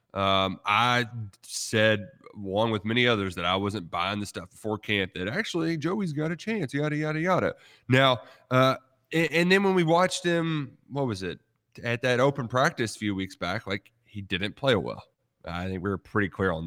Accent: American